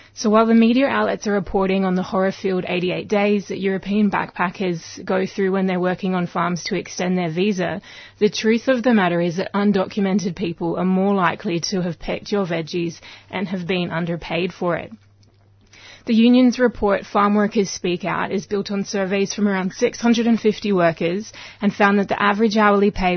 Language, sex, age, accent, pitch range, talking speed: English, female, 20-39, Australian, 175-205 Hz, 185 wpm